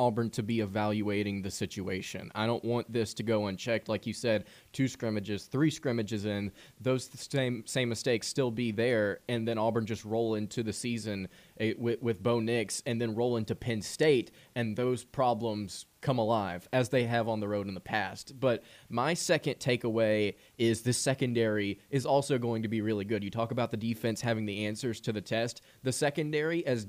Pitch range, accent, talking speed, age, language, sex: 110-125 Hz, American, 195 wpm, 20-39, English, male